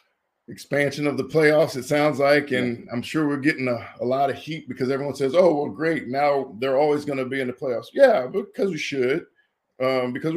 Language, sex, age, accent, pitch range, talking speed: English, male, 50-69, American, 120-145 Hz, 220 wpm